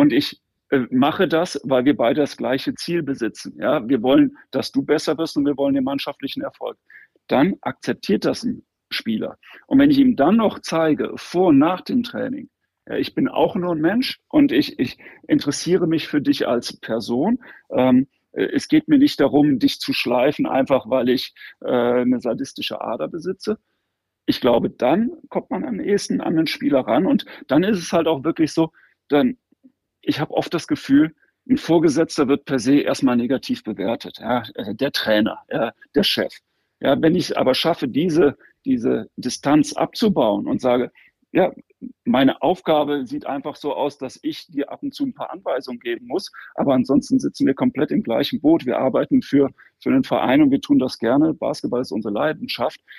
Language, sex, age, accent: German, male, 40-59, German